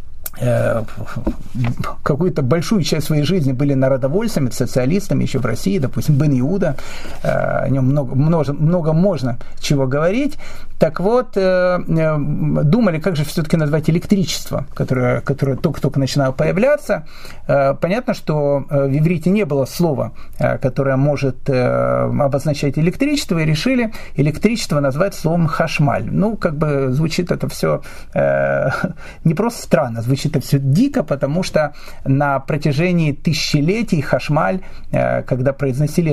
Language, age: Russian, 40-59